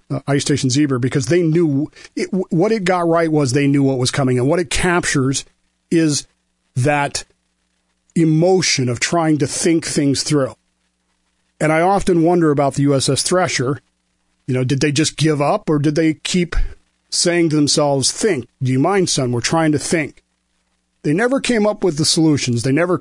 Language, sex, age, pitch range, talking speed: English, male, 40-59, 125-155 Hz, 185 wpm